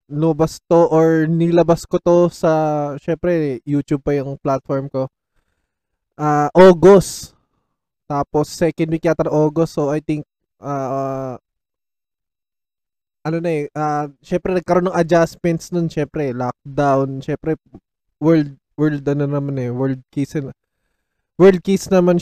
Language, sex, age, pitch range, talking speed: Filipino, male, 20-39, 140-170 Hz, 130 wpm